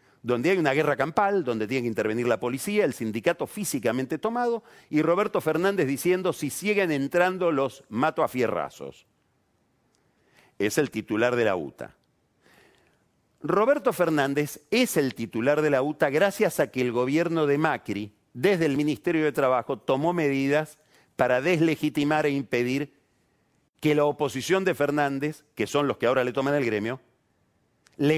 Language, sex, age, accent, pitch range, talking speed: Spanish, male, 40-59, Argentinian, 120-160 Hz, 155 wpm